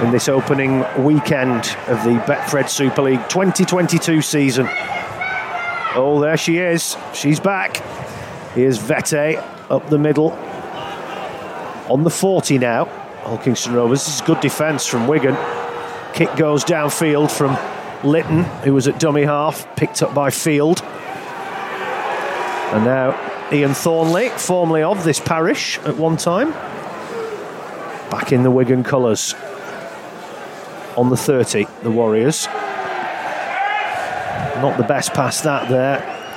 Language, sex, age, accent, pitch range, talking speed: English, male, 40-59, British, 130-165 Hz, 125 wpm